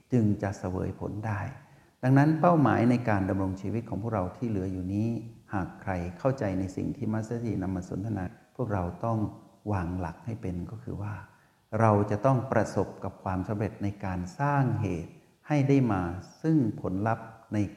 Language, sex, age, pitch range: Thai, male, 60-79, 95-120 Hz